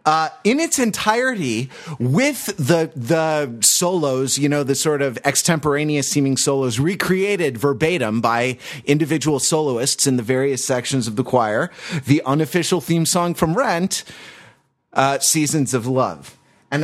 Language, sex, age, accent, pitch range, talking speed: English, male, 30-49, American, 115-145 Hz, 140 wpm